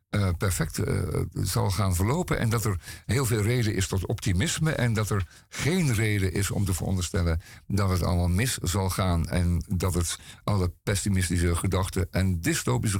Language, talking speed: Dutch, 175 wpm